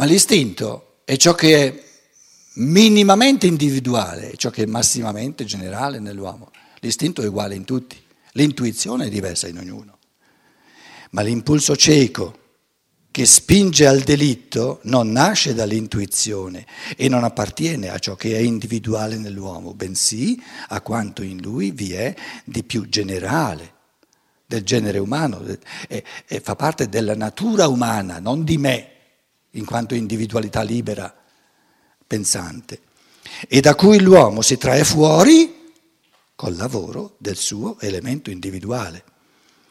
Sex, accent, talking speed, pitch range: male, native, 125 wpm, 105-155 Hz